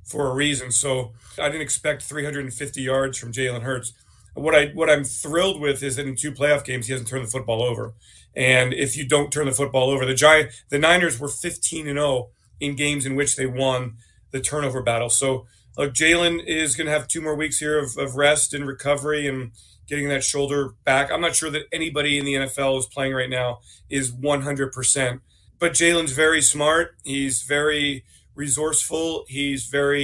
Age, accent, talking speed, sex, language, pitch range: 40-59, American, 200 wpm, male, English, 130-150 Hz